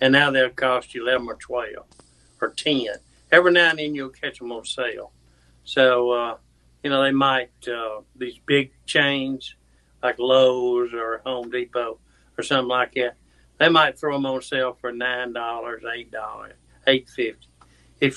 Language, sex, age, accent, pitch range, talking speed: English, male, 60-79, American, 115-135 Hz, 170 wpm